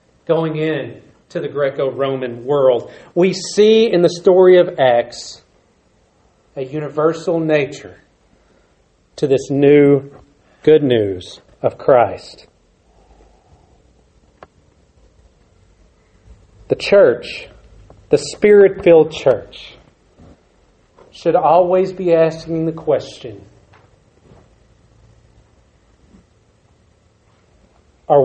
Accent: American